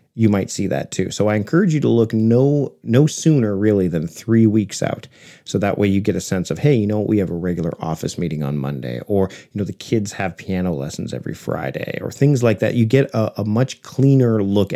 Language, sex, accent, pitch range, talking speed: English, male, American, 90-115 Hz, 245 wpm